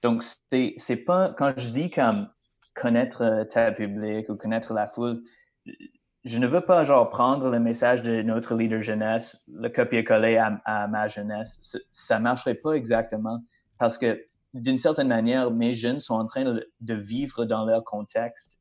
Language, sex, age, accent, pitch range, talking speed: French, male, 30-49, Canadian, 110-130 Hz, 175 wpm